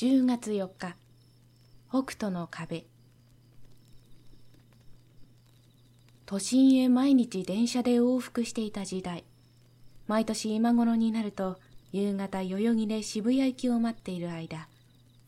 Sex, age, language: female, 20-39, Japanese